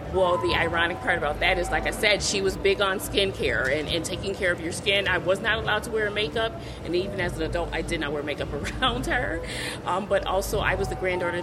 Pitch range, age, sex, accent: 165-200 Hz, 30-49, female, American